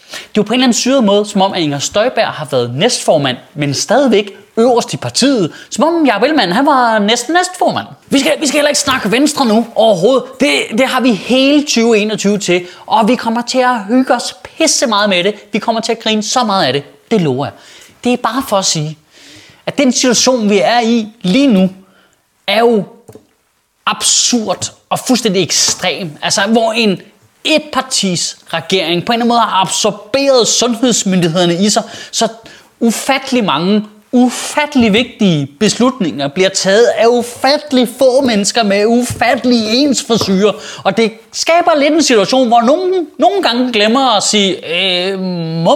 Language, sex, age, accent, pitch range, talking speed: Danish, male, 30-49, native, 195-260 Hz, 175 wpm